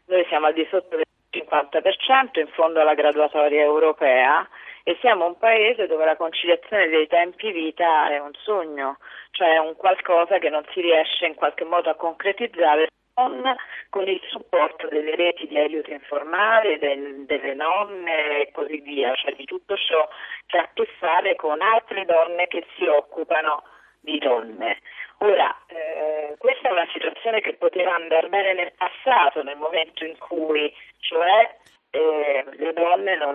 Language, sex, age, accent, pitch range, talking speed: Italian, female, 40-59, native, 150-190 Hz, 165 wpm